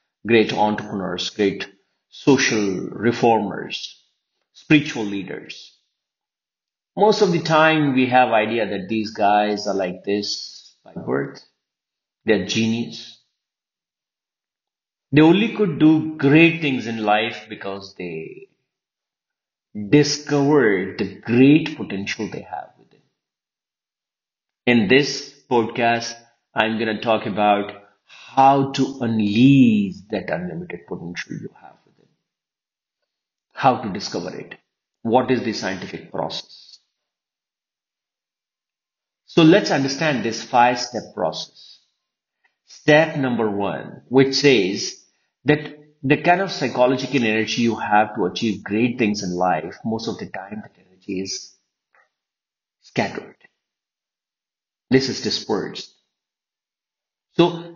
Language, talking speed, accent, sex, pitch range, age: Hindi, 110 wpm, native, male, 105-145 Hz, 50-69